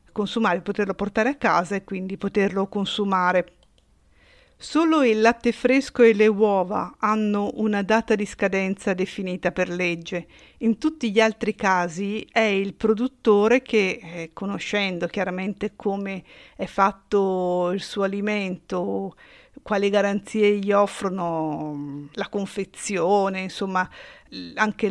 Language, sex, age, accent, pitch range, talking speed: Italian, female, 50-69, native, 190-225 Hz, 120 wpm